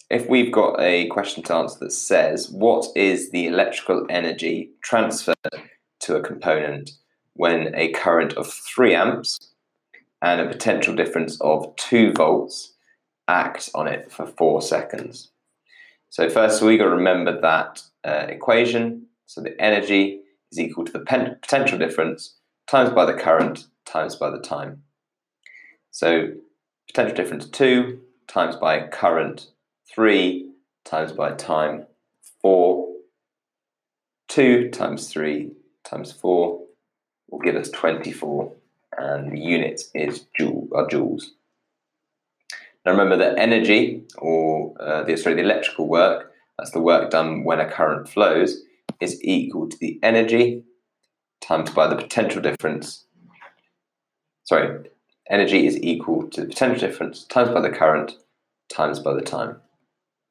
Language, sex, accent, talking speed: English, male, British, 135 wpm